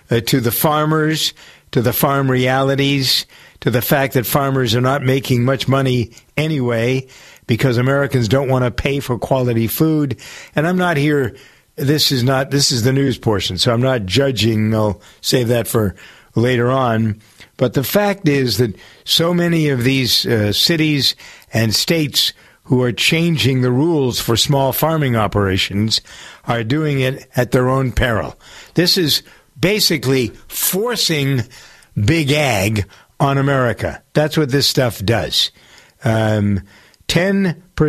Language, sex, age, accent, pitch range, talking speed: English, male, 50-69, American, 115-145 Hz, 145 wpm